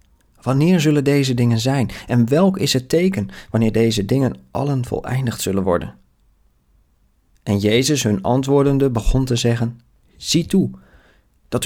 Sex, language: male, Dutch